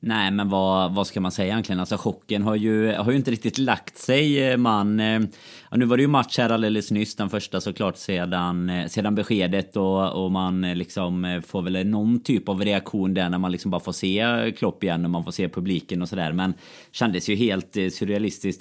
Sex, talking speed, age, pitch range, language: male, 215 wpm, 30-49, 95-115 Hz, Swedish